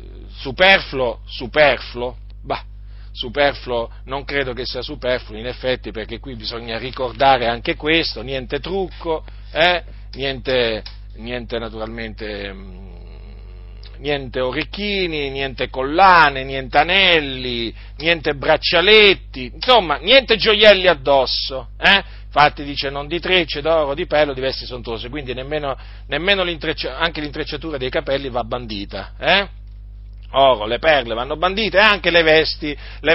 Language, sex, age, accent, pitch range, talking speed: Italian, male, 40-59, native, 110-150 Hz, 125 wpm